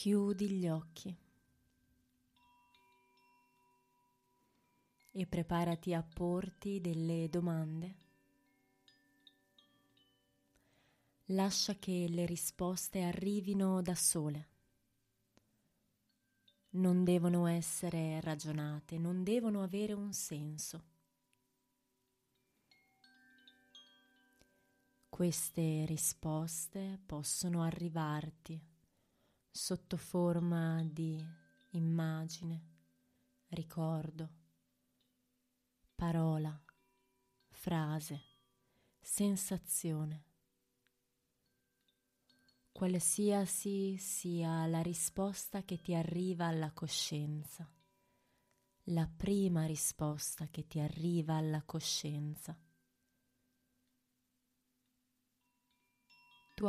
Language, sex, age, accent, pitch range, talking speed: Italian, female, 20-39, native, 145-185 Hz, 60 wpm